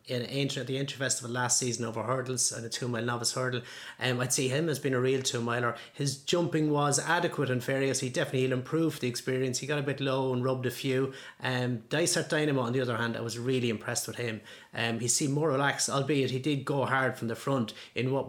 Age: 30-49